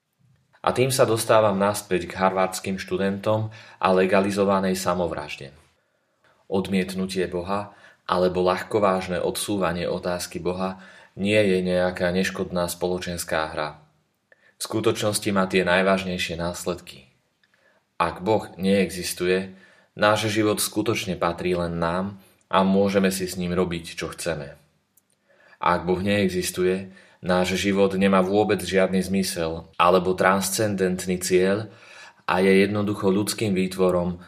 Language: Slovak